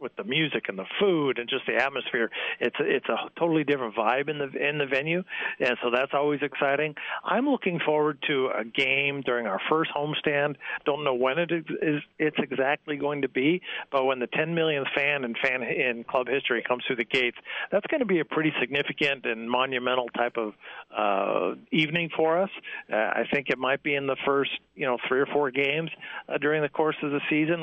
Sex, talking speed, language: male, 215 wpm, English